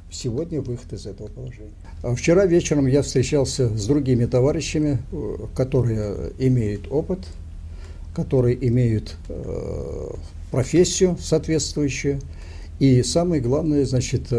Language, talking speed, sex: Russian, 100 wpm, male